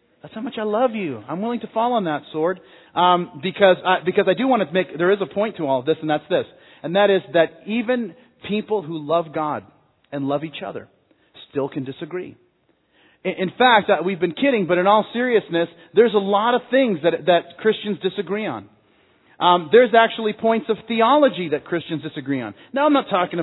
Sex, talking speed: male, 205 wpm